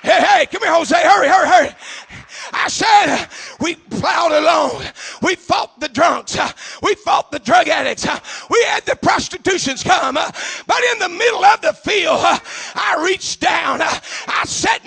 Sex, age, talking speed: male, 40-59, 155 wpm